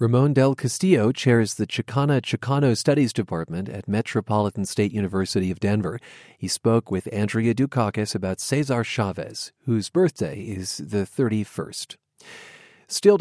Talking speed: 130 wpm